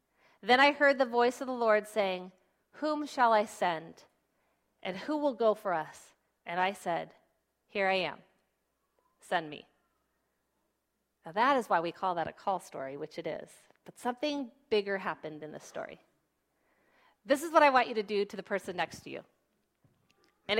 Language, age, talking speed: English, 40-59, 180 wpm